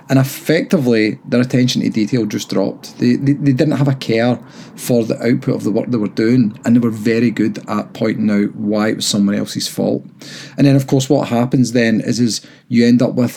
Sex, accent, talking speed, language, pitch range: male, British, 230 wpm, English, 115-140 Hz